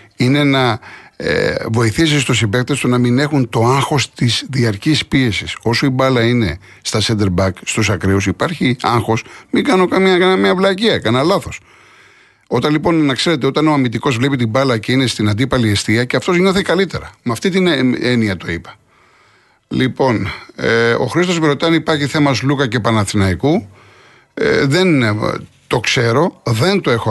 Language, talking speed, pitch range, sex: Greek, 165 wpm, 110-155 Hz, male